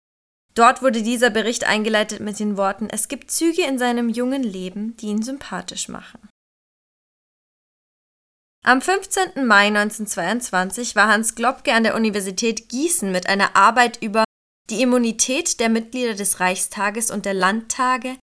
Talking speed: 140 wpm